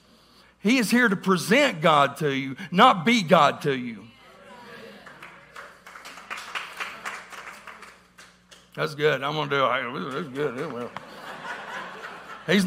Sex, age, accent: male, 50-69, American